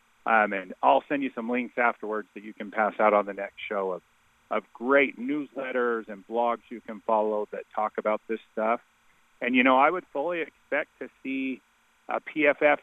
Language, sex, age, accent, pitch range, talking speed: English, male, 40-59, American, 105-130 Hz, 195 wpm